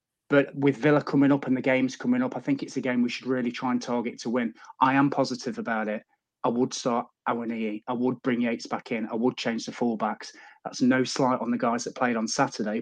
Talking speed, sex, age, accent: 250 wpm, male, 30-49, British